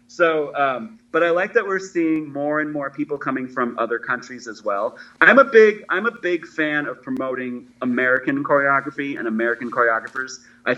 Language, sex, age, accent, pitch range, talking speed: English, male, 30-49, American, 125-180 Hz, 185 wpm